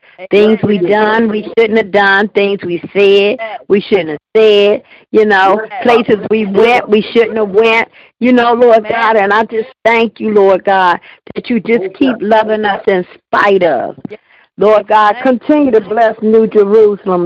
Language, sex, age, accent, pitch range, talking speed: English, female, 50-69, American, 200-235 Hz, 175 wpm